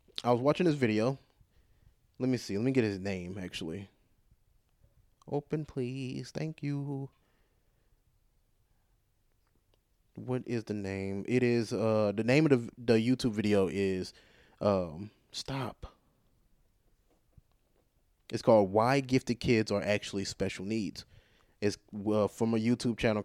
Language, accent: English, American